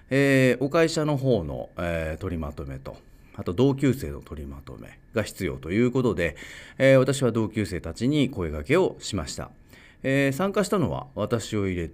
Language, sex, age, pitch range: Japanese, male, 40-59, 80-120 Hz